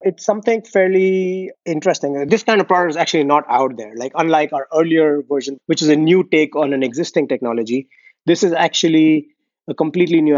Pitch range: 145-170 Hz